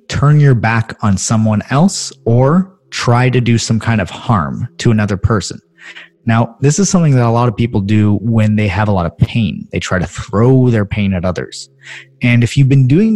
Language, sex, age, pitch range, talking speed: English, male, 30-49, 95-120 Hz, 215 wpm